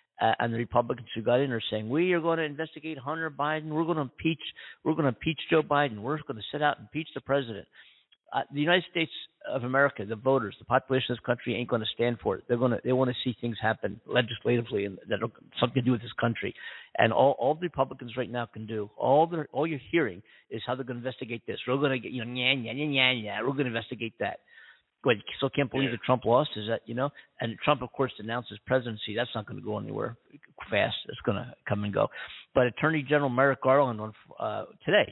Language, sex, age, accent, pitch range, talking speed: English, male, 50-69, American, 115-140 Hz, 235 wpm